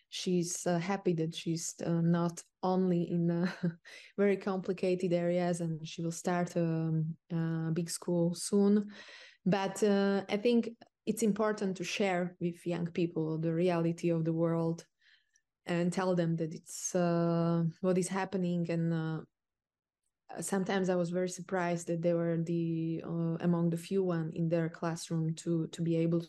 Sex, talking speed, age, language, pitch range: female, 160 wpm, 20-39, English, 165-180 Hz